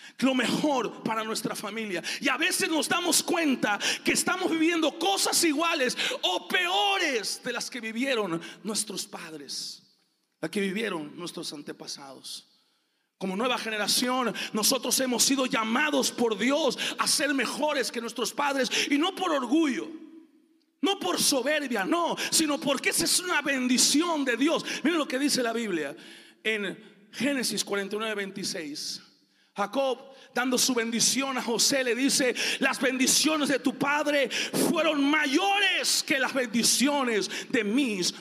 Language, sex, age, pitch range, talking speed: Spanish, male, 40-59, 230-305 Hz, 140 wpm